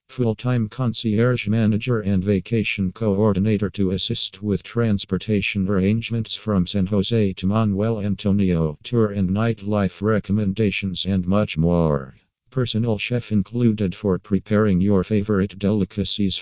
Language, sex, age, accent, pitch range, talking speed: Finnish, male, 50-69, American, 95-110 Hz, 115 wpm